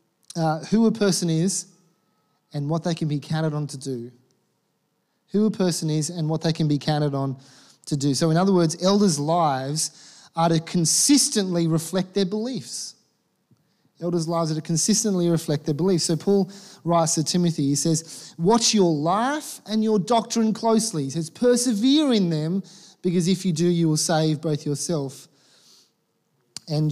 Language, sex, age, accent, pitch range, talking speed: English, male, 30-49, Australian, 150-195 Hz, 170 wpm